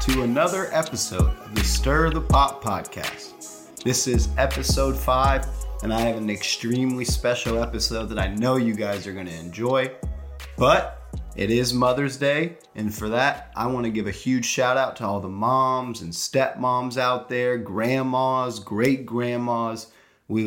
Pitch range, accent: 110-130 Hz, American